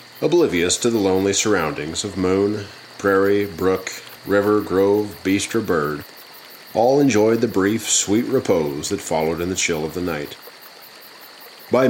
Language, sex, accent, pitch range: English, male, American, 95-115 Hz